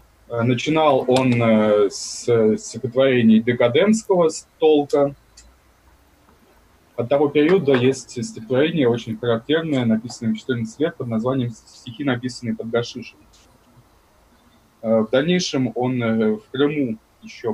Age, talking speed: 20-39, 100 wpm